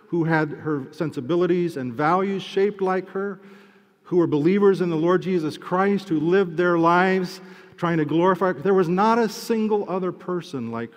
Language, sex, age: English, male, 50-69